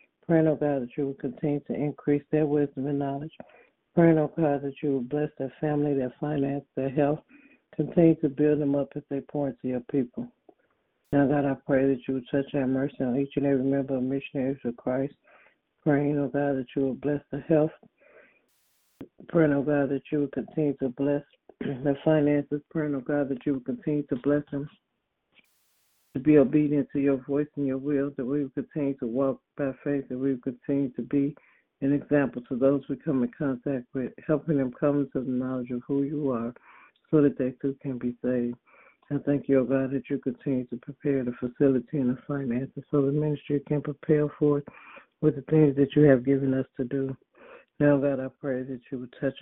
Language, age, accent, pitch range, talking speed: English, 60-79, American, 130-145 Hz, 220 wpm